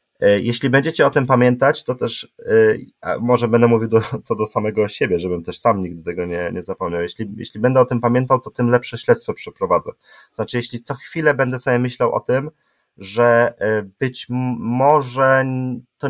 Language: Polish